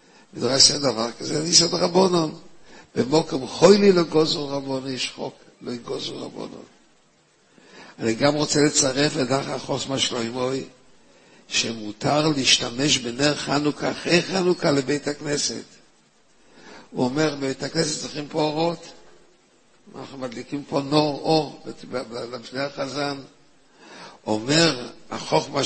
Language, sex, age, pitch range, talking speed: Hebrew, male, 60-79, 125-155 Hz, 115 wpm